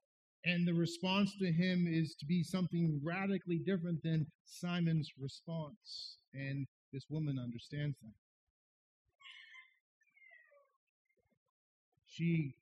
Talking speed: 95 wpm